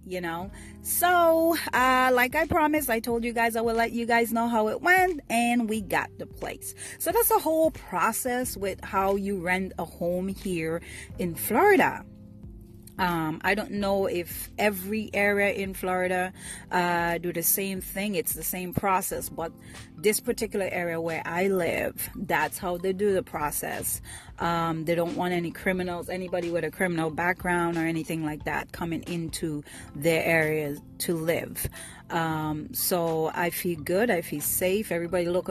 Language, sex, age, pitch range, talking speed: English, female, 30-49, 170-225 Hz, 170 wpm